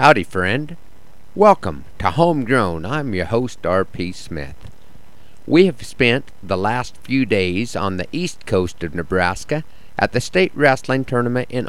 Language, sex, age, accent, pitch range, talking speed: English, male, 50-69, American, 95-140 Hz, 150 wpm